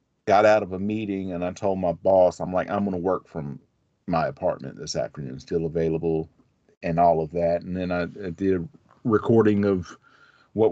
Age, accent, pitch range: 40-59, American, 85-100 Hz